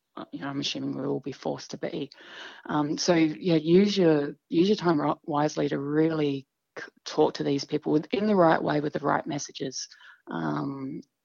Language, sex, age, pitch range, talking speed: English, female, 20-39, 140-160 Hz, 180 wpm